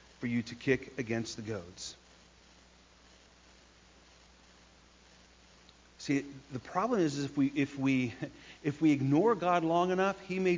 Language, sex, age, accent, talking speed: English, male, 50-69, American, 130 wpm